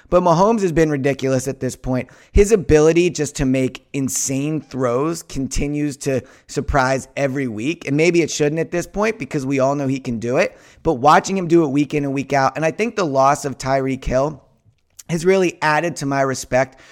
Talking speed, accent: 210 wpm, American